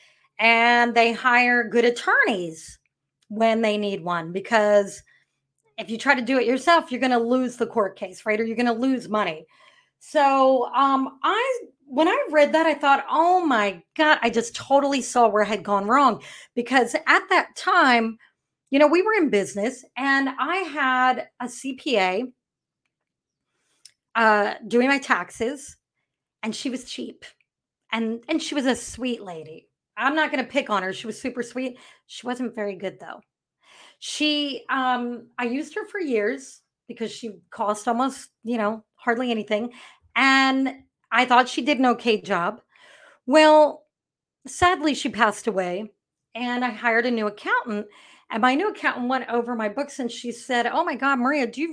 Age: 30-49